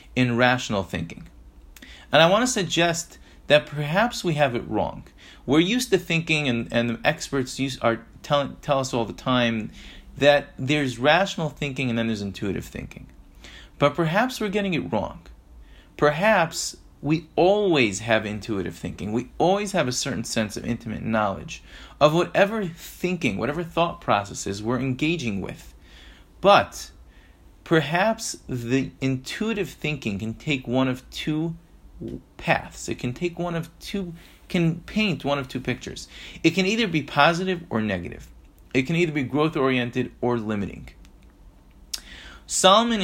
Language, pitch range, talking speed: English, 110-165 Hz, 150 wpm